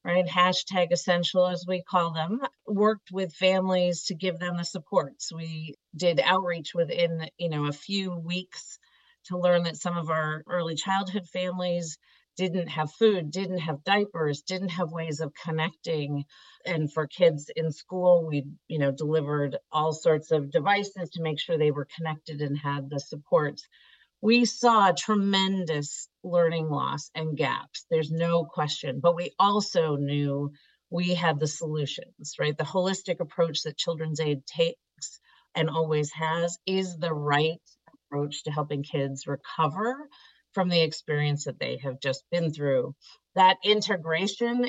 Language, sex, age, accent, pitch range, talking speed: English, female, 40-59, American, 155-185 Hz, 155 wpm